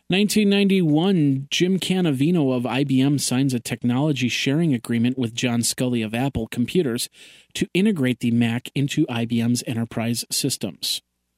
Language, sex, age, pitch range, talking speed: English, male, 40-59, 120-150 Hz, 125 wpm